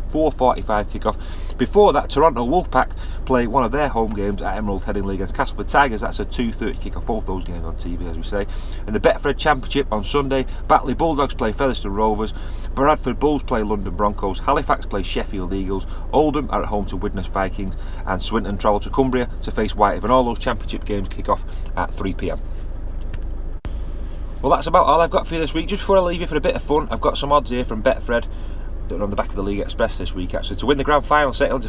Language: English